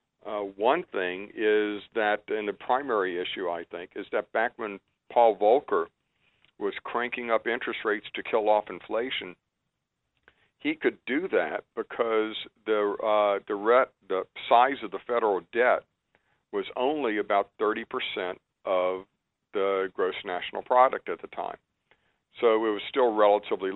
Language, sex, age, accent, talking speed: English, male, 50-69, American, 140 wpm